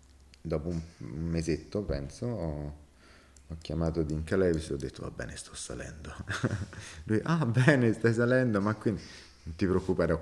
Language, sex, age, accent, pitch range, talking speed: Italian, male, 30-49, native, 80-95 Hz, 155 wpm